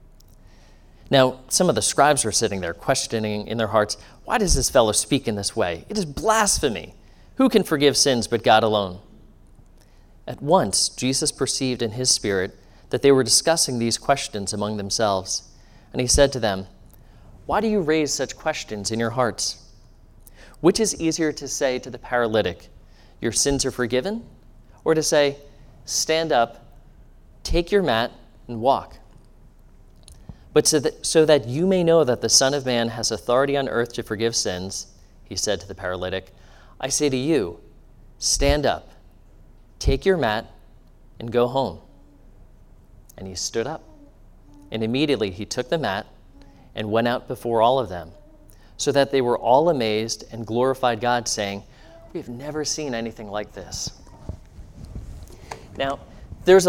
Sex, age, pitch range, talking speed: male, 30-49, 105-140 Hz, 160 wpm